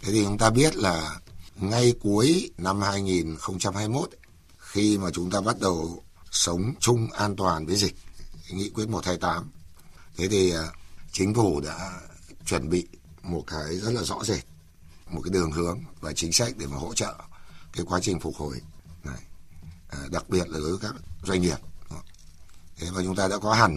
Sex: male